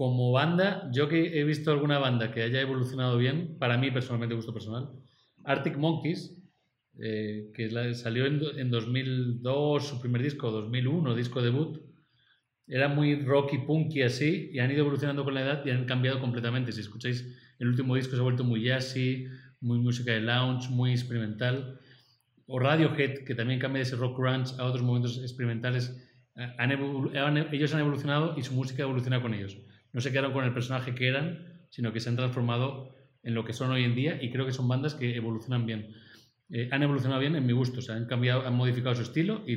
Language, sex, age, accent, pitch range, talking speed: Spanish, male, 30-49, Spanish, 120-140 Hz, 205 wpm